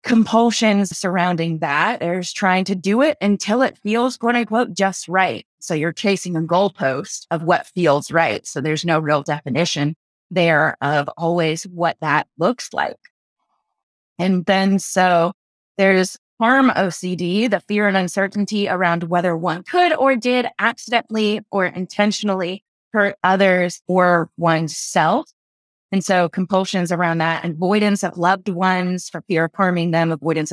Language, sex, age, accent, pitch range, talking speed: English, female, 20-39, American, 170-200 Hz, 145 wpm